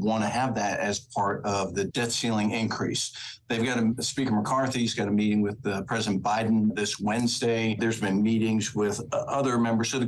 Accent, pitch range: American, 105-120 Hz